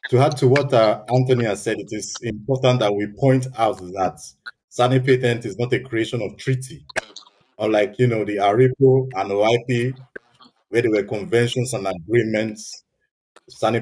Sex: male